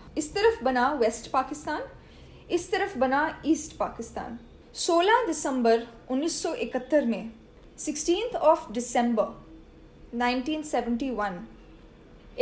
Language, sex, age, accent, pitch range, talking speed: Hindi, female, 10-29, native, 240-330 Hz, 85 wpm